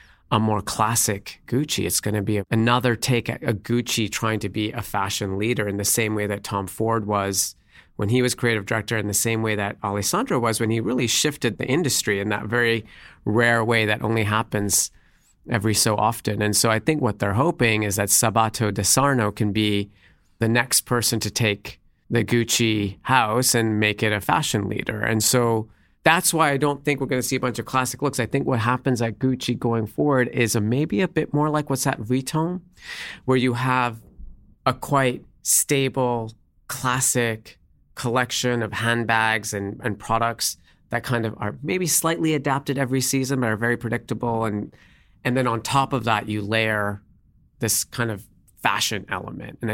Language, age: English, 40-59